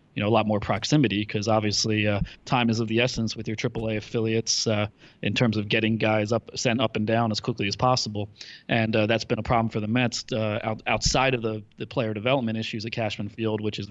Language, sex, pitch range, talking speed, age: English, male, 110-125 Hz, 240 wpm, 30-49